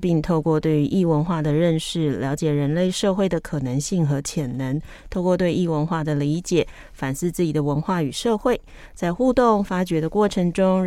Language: Chinese